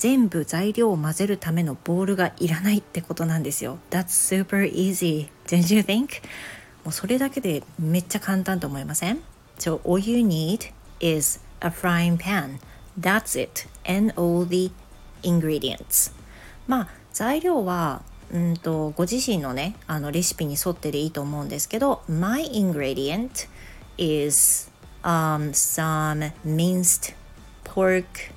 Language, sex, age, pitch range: Japanese, female, 40-59, 150-190 Hz